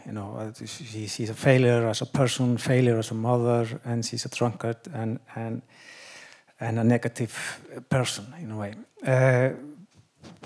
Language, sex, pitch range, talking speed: Hungarian, male, 120-140 Hz, 150 wpm